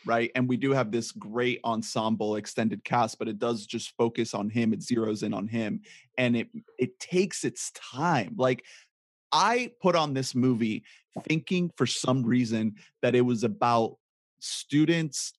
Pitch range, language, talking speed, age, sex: 115-155 Hz, English, 170 wpm, 30-49, male